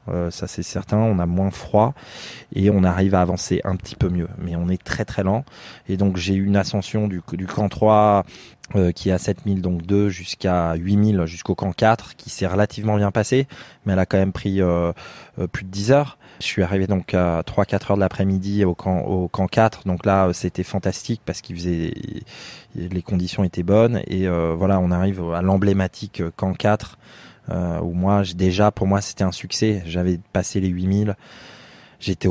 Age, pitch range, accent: 20-39, 90-100 Hz, French